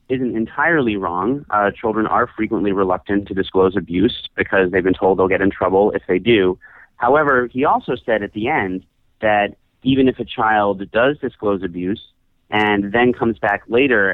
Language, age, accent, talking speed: English, 30-49, American, 180 wpm